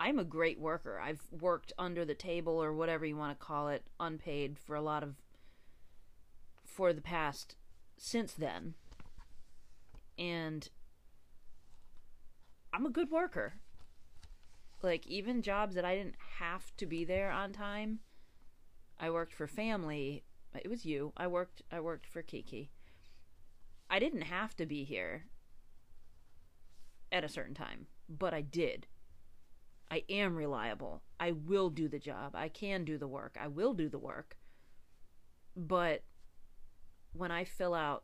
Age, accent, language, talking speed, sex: 30-49, American, English, 145 wpm, female